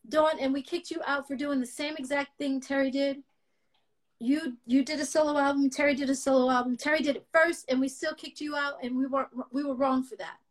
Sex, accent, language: female, American, English